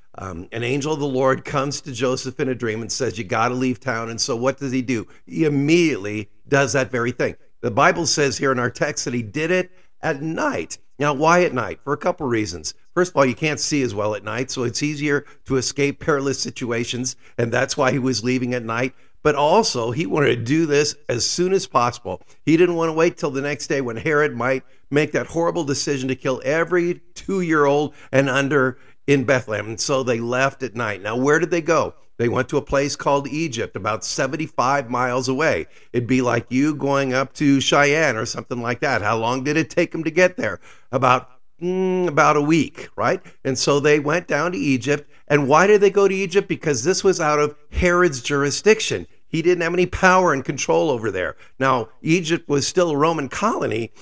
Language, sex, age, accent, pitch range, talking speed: English, male, 50-69, American, 125-160 Hz, 220 wpm